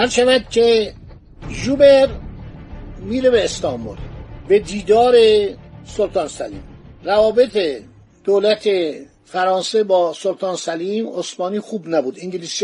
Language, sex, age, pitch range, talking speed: Persian, male, 50-69, 190-245 Hz, 95 wpm